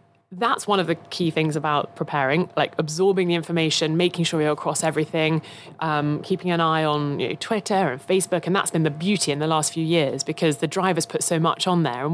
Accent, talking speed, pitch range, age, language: British, 225 wpm, 155-190 Hz, 20-39, English